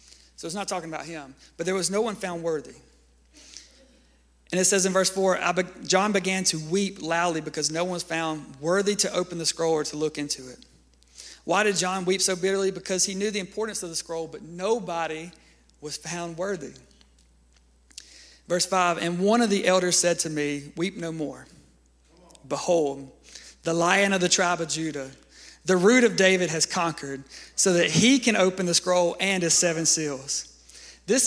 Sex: male